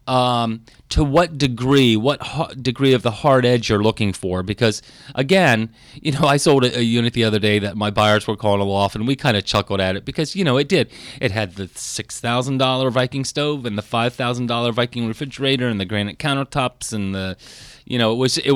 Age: 30-49